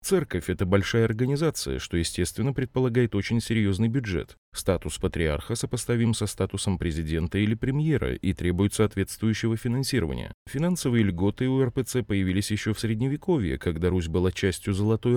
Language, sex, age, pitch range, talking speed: Russian, male, 30-49, 90-120 Hz, 140 wpm